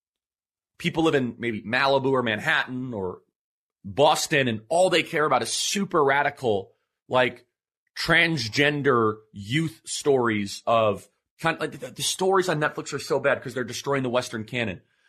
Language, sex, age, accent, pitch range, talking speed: English, male, 30-49, American, 125-175 Hz, 160 wpm